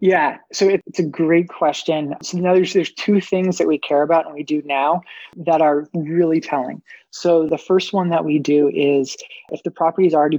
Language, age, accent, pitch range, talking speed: English, 20-39, American, 150-180 Hz, 215 wpm